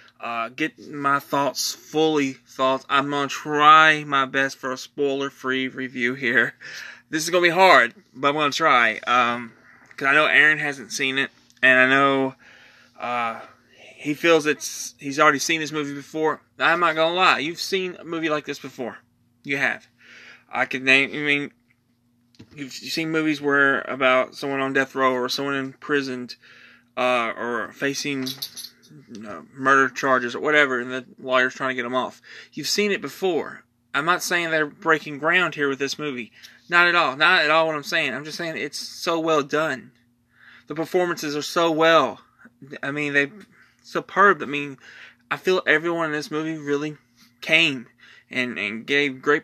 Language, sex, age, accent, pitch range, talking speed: English, male, 20-39, American, 130-155 Hz, 180 wpm